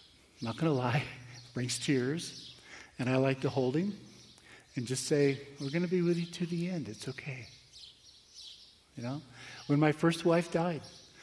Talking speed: 175 wpm